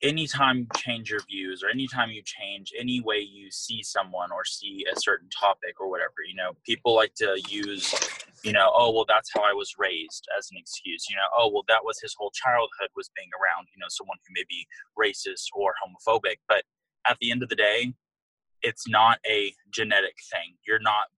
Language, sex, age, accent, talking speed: English, male, 20-39, American, 210 wpm